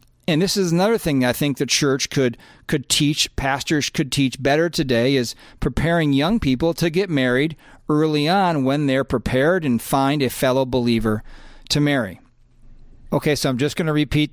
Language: English